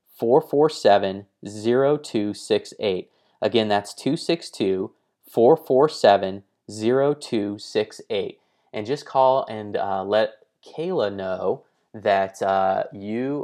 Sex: male